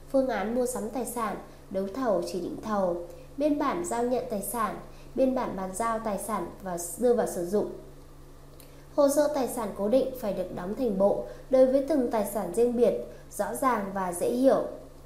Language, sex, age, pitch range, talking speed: Vietnamese, female, 20-39, 200-255 Hz, 205 wpm